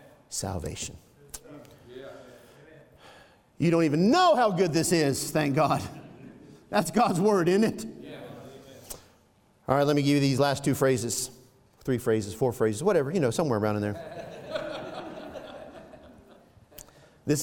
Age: 50-69